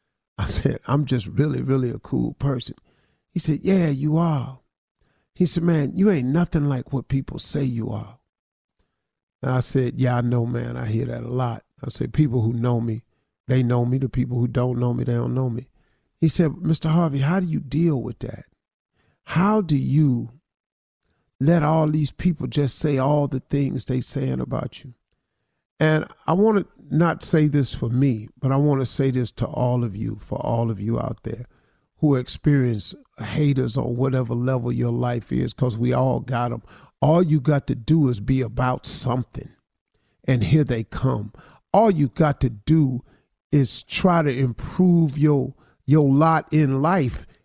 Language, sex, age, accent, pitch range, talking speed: English, male, 40-59, American, 120-155 Hz, 190 wpm